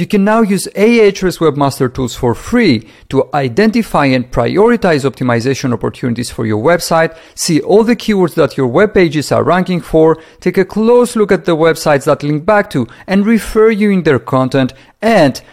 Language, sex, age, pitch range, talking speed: English, male, 40-59, 130-175 Hz, 180 wpm